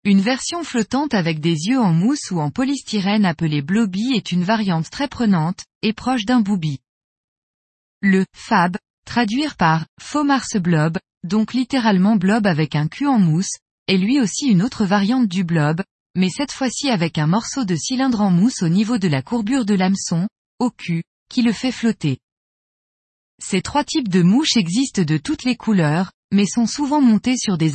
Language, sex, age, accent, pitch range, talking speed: French, female, 20-39, French, 180-240 Hz, 190 wpm